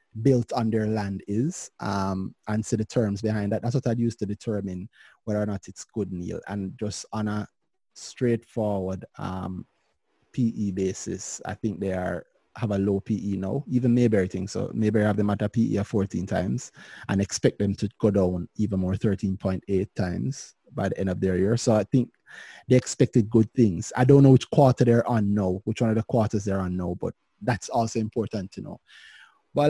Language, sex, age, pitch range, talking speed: English, male, 30-49, 100-115 Hz, 200 wpm